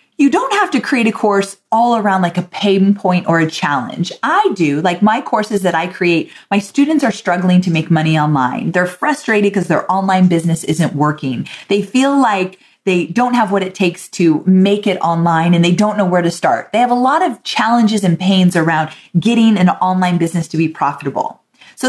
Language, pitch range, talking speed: English, 180-230 Hz, 210 wpm